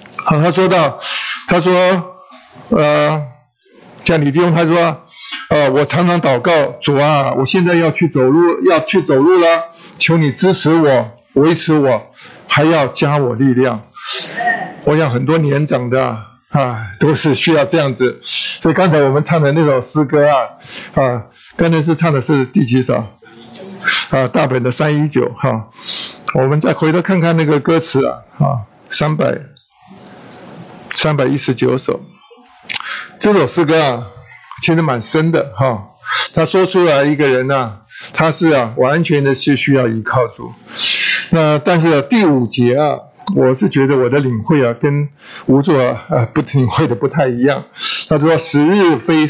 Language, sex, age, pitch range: Chinese, male, 50-69, 130-165 Hz